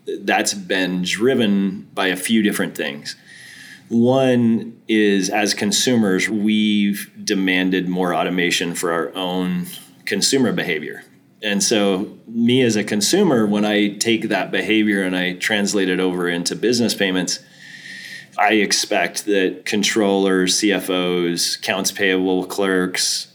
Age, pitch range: 30-49, 90-105 Hz